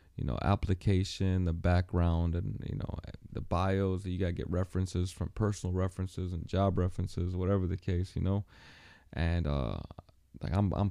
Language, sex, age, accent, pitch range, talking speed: English, male, 20-39, American, 85-100 Hz, 165 wpm